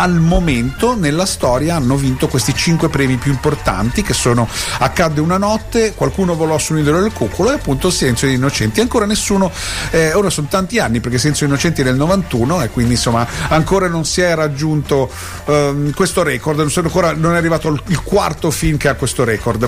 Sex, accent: male, native